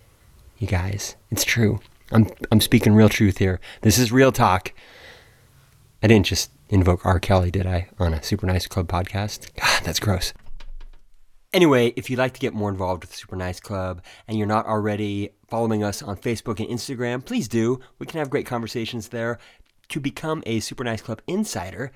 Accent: American